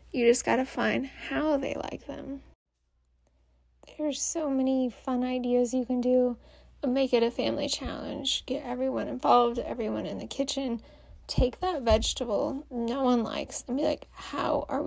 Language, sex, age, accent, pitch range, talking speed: English, female, 20-39, American, 250-295 Hz, 160 wpm